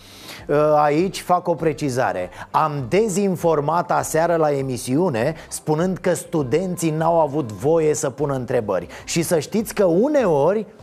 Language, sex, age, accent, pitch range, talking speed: Romanian, male, 30-49, native, 155-200 Hz, 130 wpm